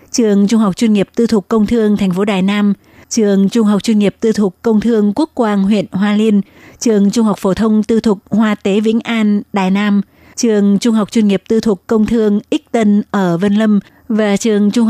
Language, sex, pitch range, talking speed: Vietnamese, female, 195-225 Hz, 230 wpm